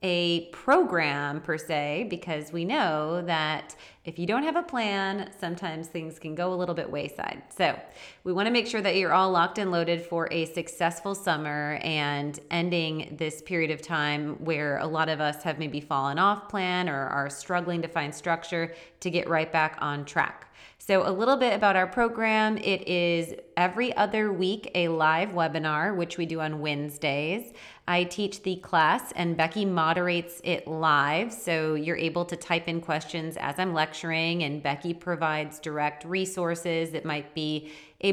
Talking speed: 180 wpm